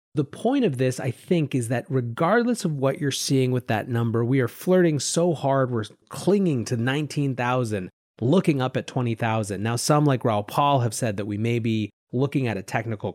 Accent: American